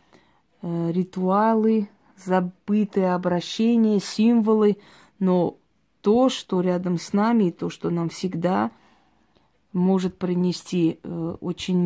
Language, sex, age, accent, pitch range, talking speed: Russian, female, 30-49, native, 170-200 Hz, 90 wpm